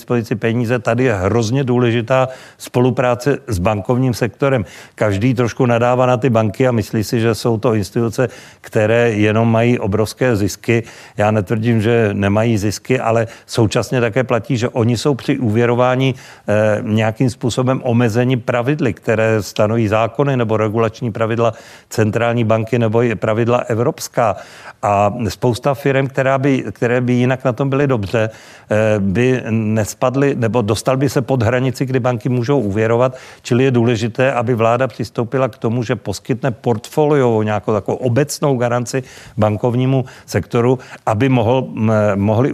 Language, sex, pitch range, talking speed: Czech, male, 110-130 Hz, 150 wpm